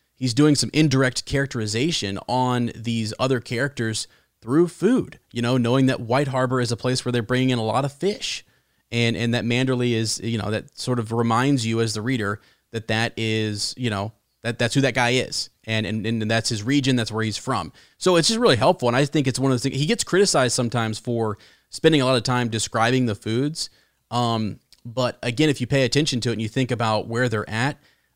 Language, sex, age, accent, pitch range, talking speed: English, male, 30-49, American, 115-135 Hz, 225 wpm